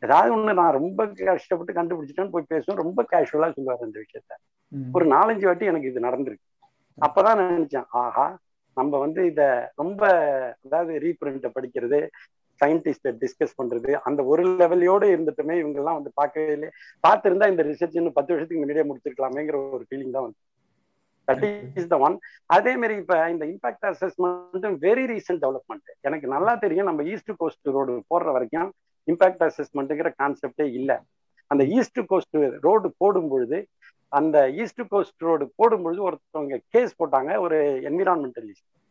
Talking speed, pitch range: 135 wpm, 145-195 Hz